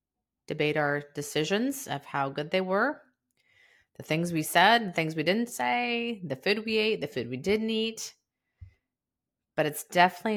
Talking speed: 170 wpm